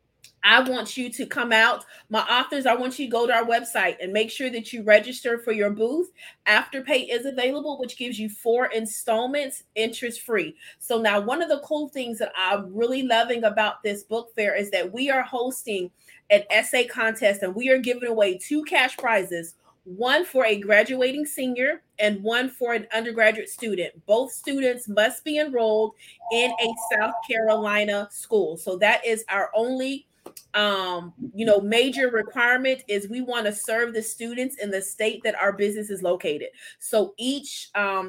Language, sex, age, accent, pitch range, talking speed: English, female, 30-49, American, 210-255 Hz, 180 wpm